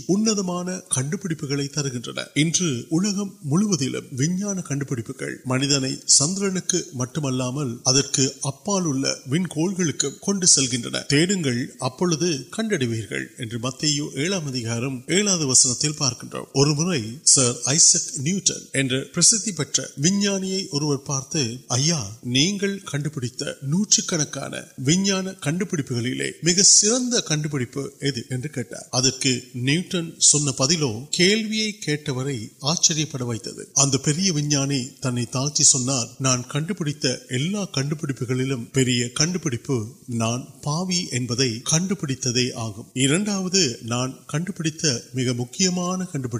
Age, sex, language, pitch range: 30-49, male, Urdu, 130-175 Hz